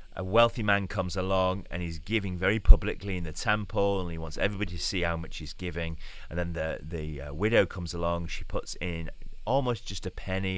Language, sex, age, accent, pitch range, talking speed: English, male, 30-49, British, 80-100 Hz, 210 wpm